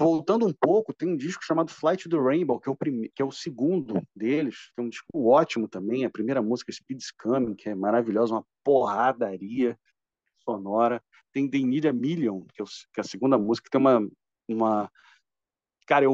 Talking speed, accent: 195 wpm, Brazilian